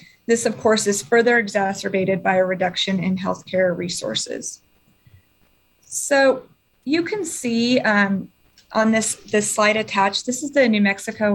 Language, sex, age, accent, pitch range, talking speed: English, female, 30-49, American, 195-240 Hz, 145 wpm